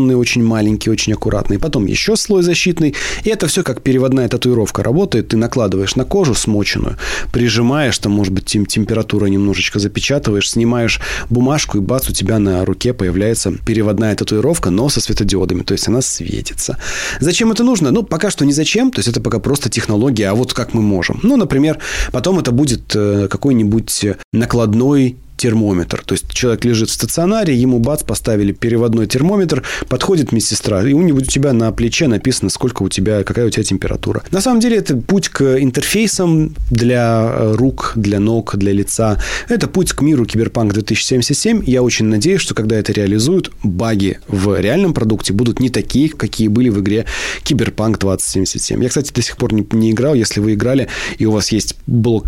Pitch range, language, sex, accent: 105-135 Hz, Russian, male, native